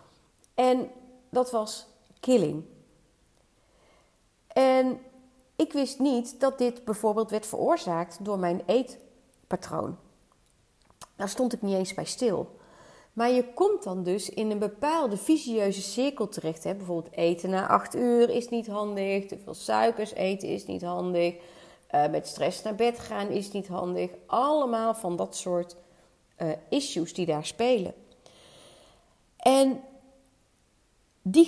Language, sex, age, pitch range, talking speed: Dutch, female, 40-59, 190-255 Hz, 130 wpm